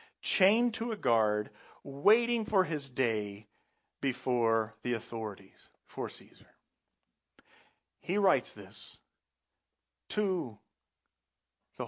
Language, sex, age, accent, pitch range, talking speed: English, male, 40-59, American, 125-185 Hz, 90 wpm